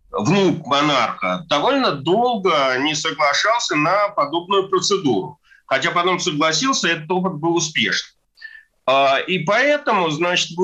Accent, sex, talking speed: native, male, 115 wpm